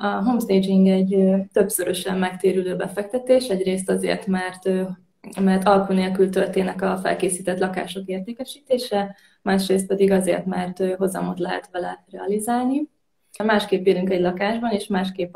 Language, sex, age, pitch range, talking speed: Hungarian, female, 20-39, 190-210 Hz, 120 wpm